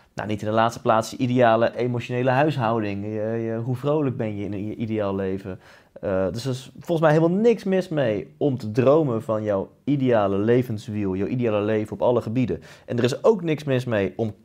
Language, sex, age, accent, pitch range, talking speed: Dutch, male, 30-49, Dutch, 105-130 Hz, 210 wpm